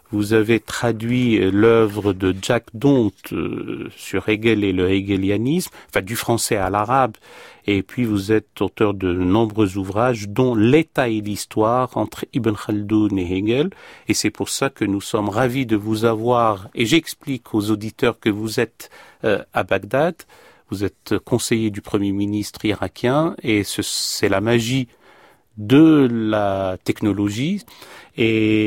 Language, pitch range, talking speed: French, 105-135 Hz, 145 wpm